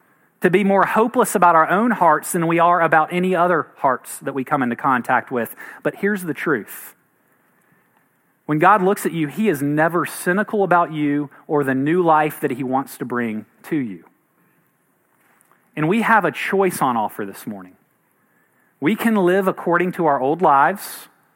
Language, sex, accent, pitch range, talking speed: English, male, American, 140-185 Hz, 180 wpm